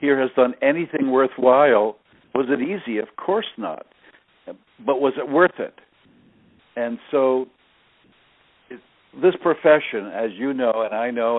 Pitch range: 115-160 Hz